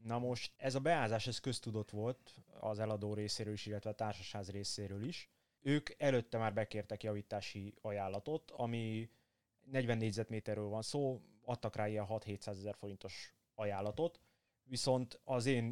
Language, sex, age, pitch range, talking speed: Hungarian, male, 20-39, 105-120 Hz, 140 wpm